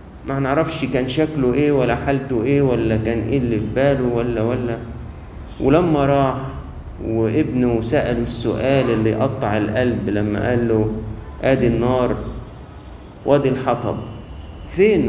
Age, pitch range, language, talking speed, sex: 50-69, 90-140 Hz, Arabic, 130 wpm, male